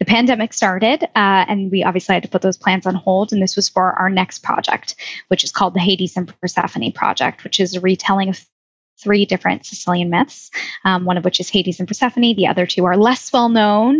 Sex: female